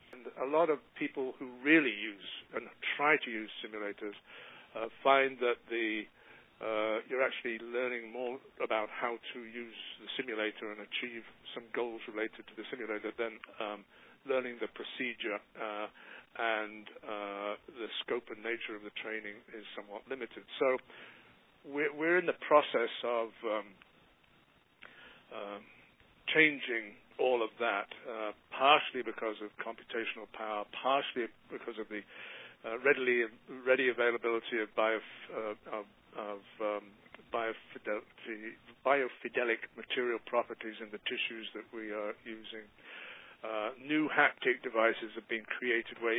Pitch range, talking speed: 105-125 Hz, 140 wpm